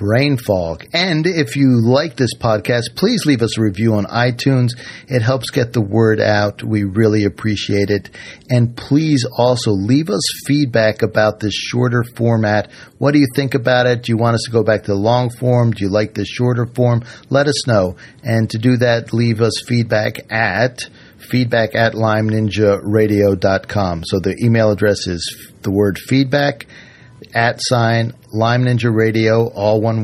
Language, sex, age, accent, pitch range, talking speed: English, male, 50-69, American, 105-125 Hz, 175 wpm